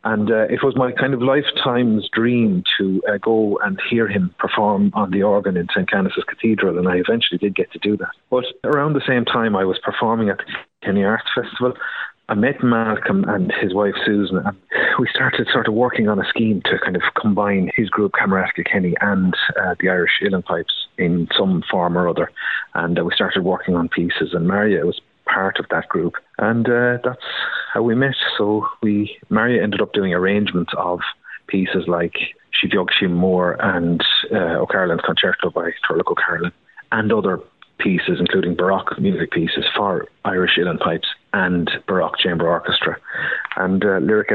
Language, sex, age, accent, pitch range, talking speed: English, male, 30-49, Irish, 95-115 Hz, 185 wpm